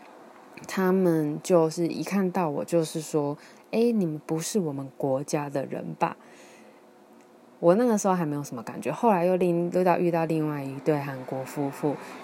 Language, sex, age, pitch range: Chinese, female, 20-39, 155-190 Hz